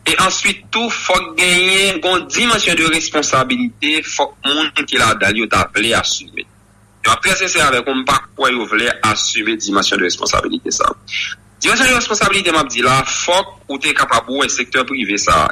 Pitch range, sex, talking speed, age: 125-195 Hz, male, 180 wpm, 30-49